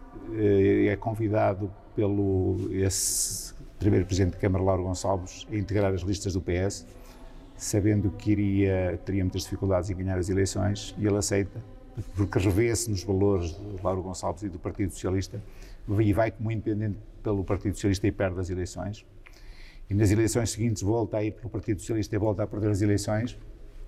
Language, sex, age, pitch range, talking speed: Portuguese, male, 50-69, 95-110 Hz, 170 wpm